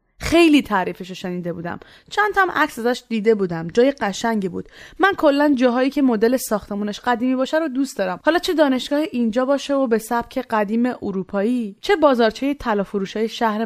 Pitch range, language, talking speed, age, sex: 205-285 Hz, Persian, 170 wpm, 20-39, female